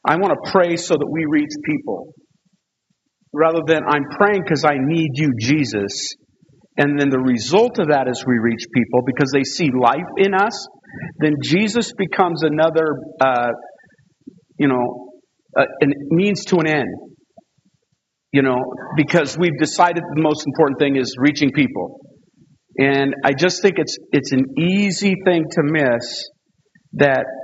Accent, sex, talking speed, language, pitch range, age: American, male, 155 wpm, English, 135-175 Hz, 50-69